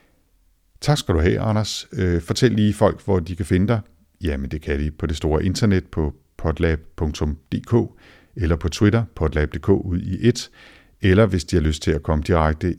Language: Danish